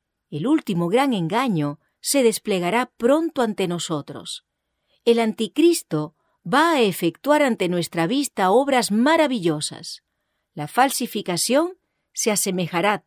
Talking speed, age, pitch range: 105 wpm, 40-59, 175-255 Hz